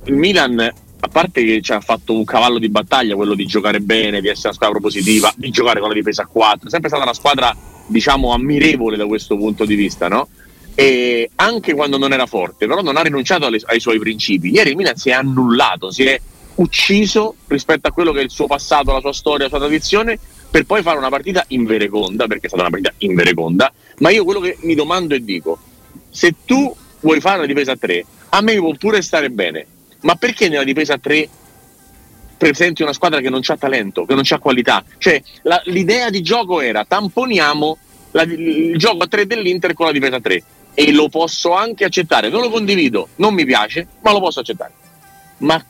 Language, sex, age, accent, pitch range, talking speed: Italian, male, 40-59, native, 120-175 Hz, 215 wpm